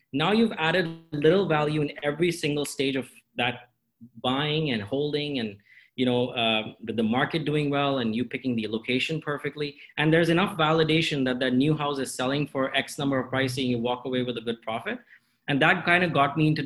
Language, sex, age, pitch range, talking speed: English, male, 30-49, 120-145 Hz, 205 wpm